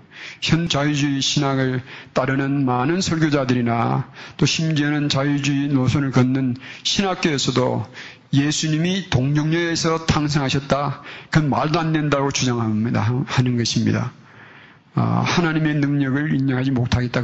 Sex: male